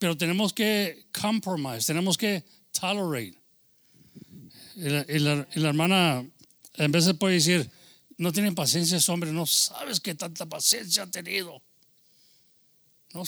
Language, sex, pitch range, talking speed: English, male, 155-210 Hz, 140 wpm